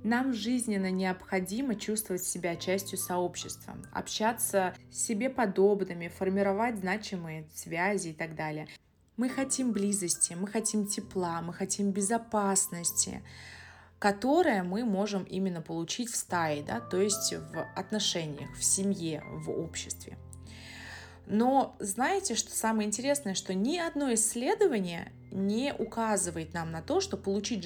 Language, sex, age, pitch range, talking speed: Russian, female, 20-39, 170-215 Hz, 125 wpm